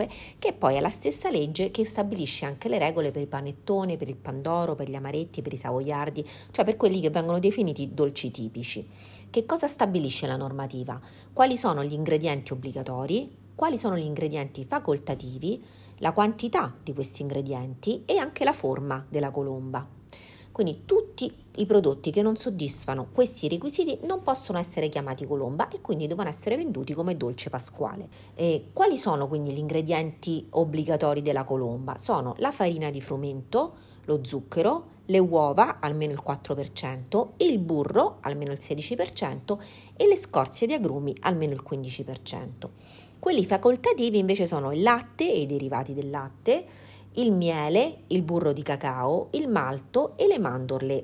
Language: Italian